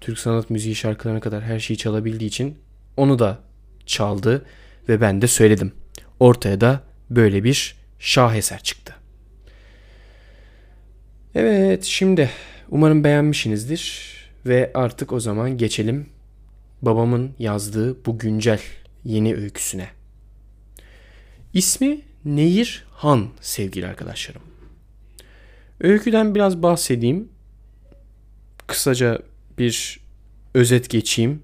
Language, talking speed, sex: Turkish, 95 wpm, male